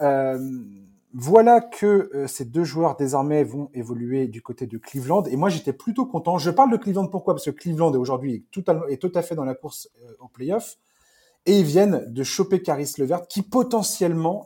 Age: 20-39